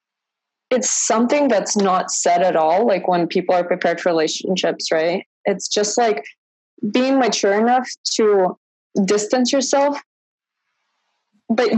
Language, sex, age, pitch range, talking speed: English, female, 20-39, 180-230 Hz, 125 wpm